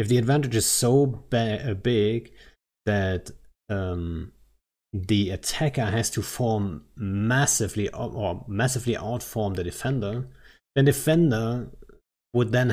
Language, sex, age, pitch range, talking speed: English, male, 30-49, 100-120 Hz, 110 wpm